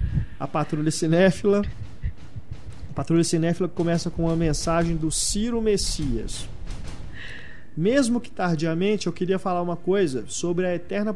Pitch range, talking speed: 140-175 Hz, 130 wpm